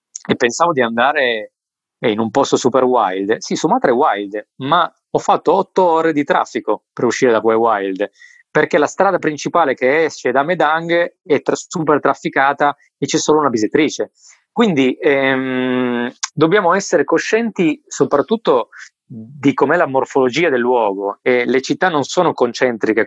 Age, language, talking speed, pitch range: 20-39, Italian, 155 wpm, 125-170 Hz